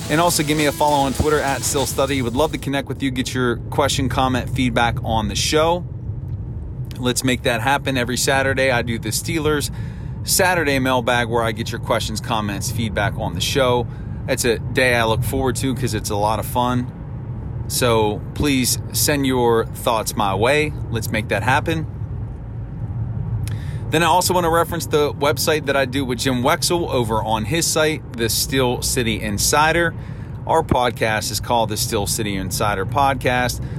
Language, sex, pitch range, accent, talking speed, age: English, male, 115-140 Hz, American, 180 wpm, 30-49